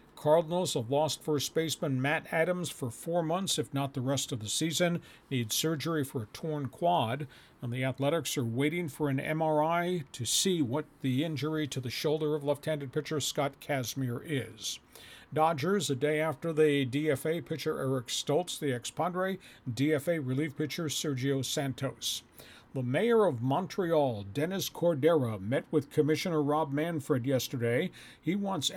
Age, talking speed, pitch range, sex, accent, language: 50-69, 160 wpm, 130-160 Hz, male, American, English